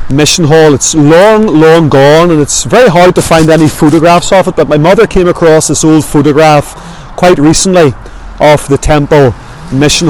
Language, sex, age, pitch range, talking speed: English, male, 30-49, 140-175 Hz, 180 wpm